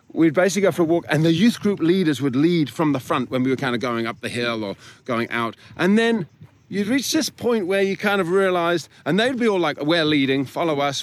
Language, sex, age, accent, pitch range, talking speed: English, male, 30-49, British, 135-190 Hz, 260 wpm